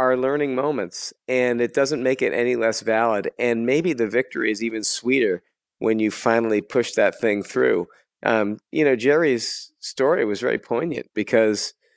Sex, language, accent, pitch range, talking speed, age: male, English, American, 105-120 Hz, 165 wpm, 40-59